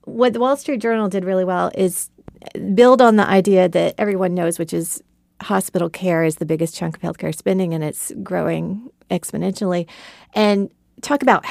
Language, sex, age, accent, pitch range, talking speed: English, female, 40-59, American, 170-200 Hz, 175 wpm